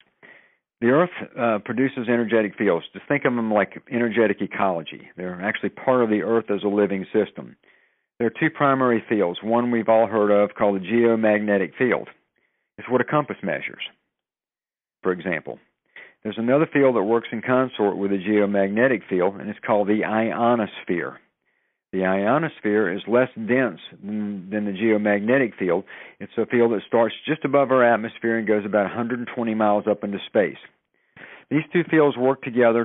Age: 50-69